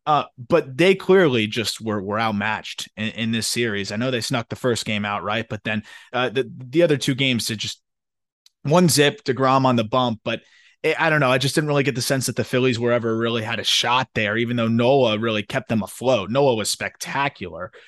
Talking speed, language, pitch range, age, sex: 230 wpm, English, 120-155 Hz, 20-39, male